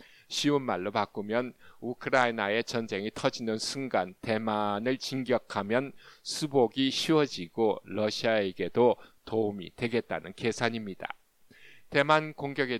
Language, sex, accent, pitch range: Korean, male, native, 105-130 Hz